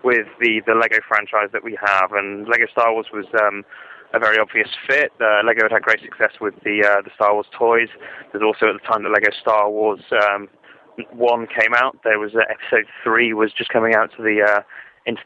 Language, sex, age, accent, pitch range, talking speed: English, male, 20-39, British, 105-130 Hz, 225 wpm